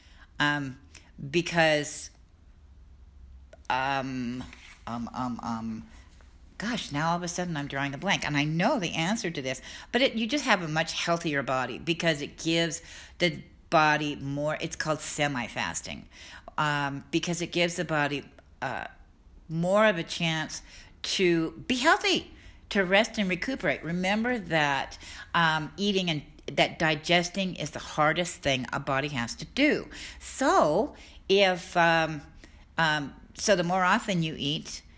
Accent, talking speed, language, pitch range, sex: American, 150 wpm, English, 130-175 Hz, female